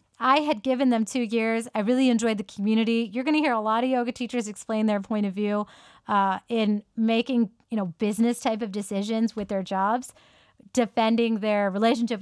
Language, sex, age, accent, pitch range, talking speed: English, female, 30-49, American, 195-240 Hz, 195 wpm